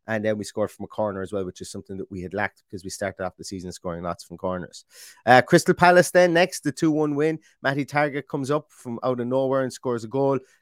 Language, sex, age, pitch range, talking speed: English, male, 30-49, 115-140 Hz, 265 wpm